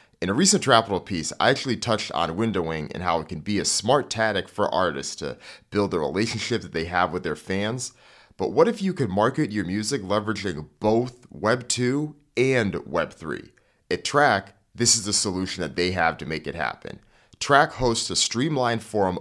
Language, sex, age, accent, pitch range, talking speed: English, male, 30-49, American, 90-115 Hz, 190 wpm